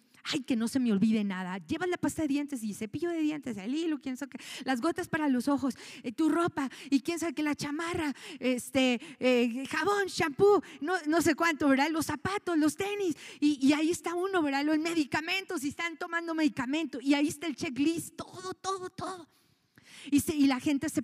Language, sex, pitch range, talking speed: Spanish, female, 235-300 Hz, 205 wpm